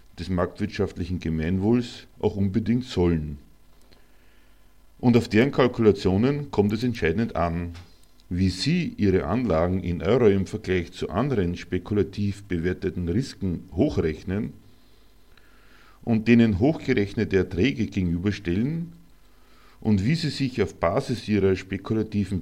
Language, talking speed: German, 110 wpm